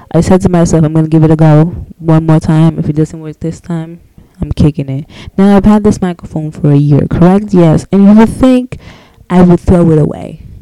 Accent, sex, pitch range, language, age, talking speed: American, female, 140-185 Hz, English, 20-39, 235 wpm